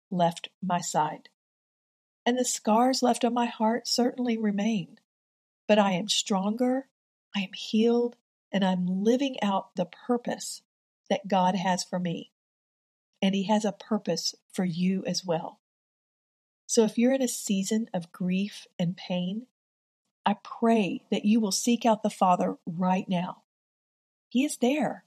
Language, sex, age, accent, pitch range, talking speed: English, female, 50-69, American, 185-230 Hz, 150 wpm